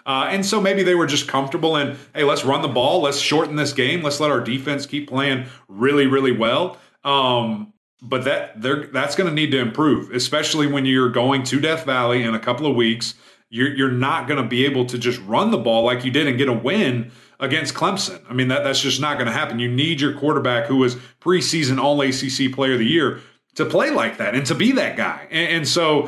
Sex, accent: male, American